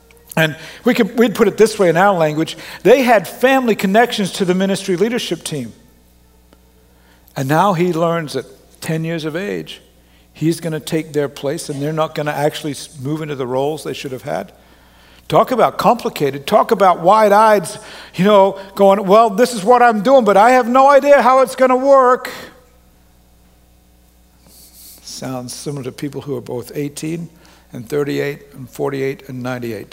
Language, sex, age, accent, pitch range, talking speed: English, male, 60-79, American, 120-170 Hz, 170 wpm